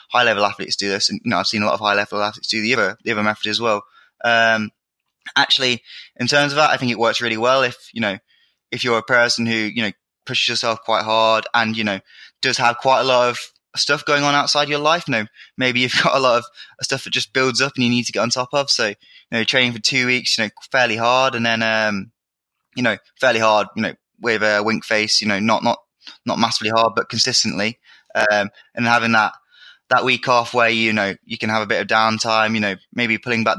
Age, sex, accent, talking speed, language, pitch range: 20-39, male, British, 250 wpm, English, 110-125 Hz